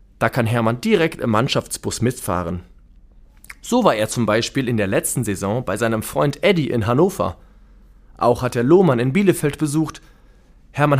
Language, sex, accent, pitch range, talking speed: German, male, German, 105-155 Hz, 165 wpm